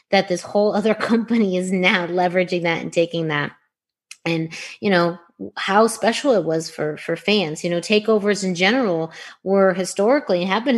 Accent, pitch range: American, 165-205 Hz